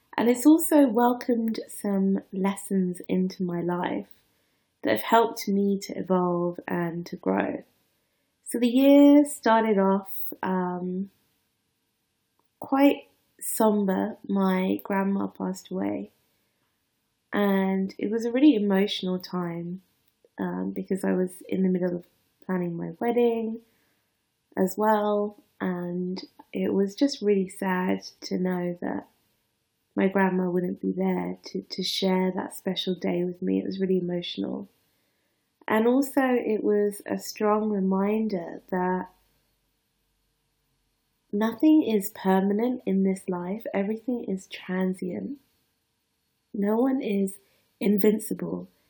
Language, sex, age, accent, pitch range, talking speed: English, female, 20-39, British, 185-225 Hz, 120 wpm